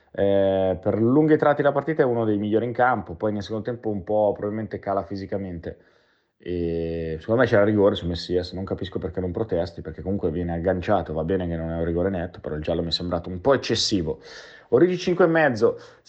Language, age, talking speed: Italian, 30-49, 210 wpm